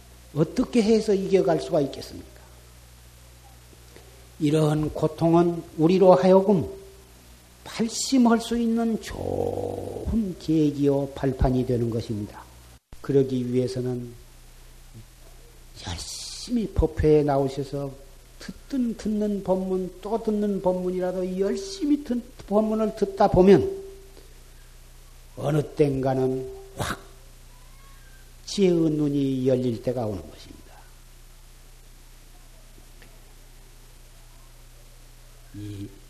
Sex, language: male, Korean